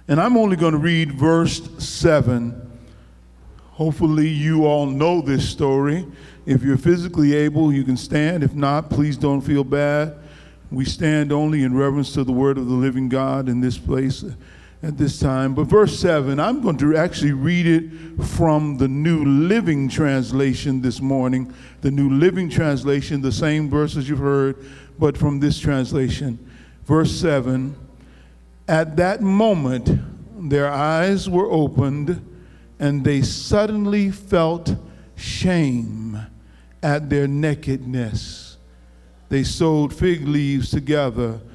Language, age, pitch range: English, 50-69, 125-155 Hz